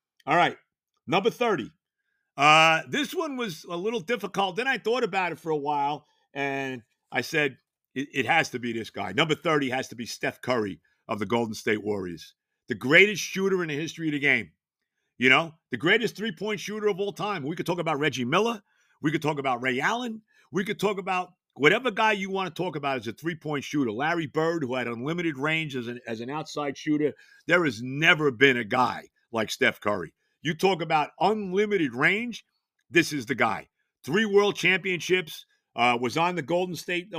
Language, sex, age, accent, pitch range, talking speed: English, male, 50-69, American, 135-175 Hz, 200 wpm